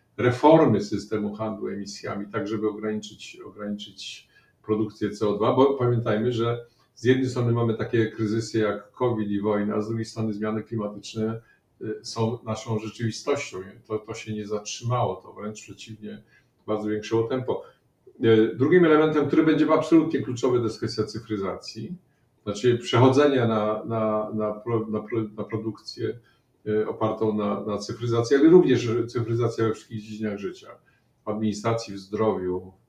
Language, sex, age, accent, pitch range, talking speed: Polish, male, 50-69, native, 110-125 Hz, 135 wpm